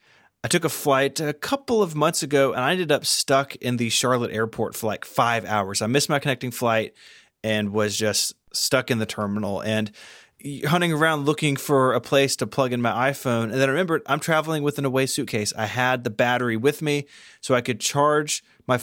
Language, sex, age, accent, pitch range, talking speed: English, male, 20-39, American, 115-145 Hz, 215 wpm